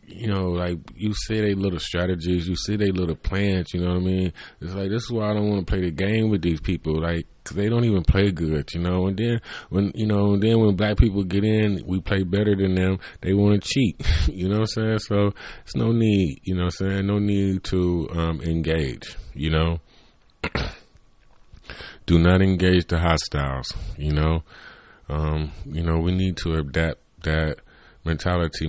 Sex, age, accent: male, 20-39, American